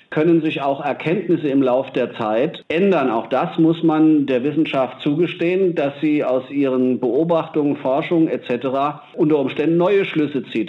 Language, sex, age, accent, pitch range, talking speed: German, male, 40-59, German, 130-160 Hz, 155 wpm